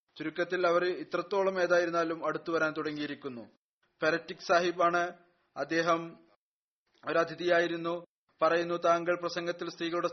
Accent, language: native, Malayalam